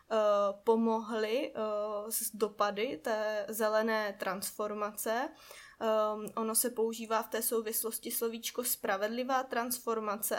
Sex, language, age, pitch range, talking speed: female, Czech, 20-39, 210-225 Hz, 85 wpm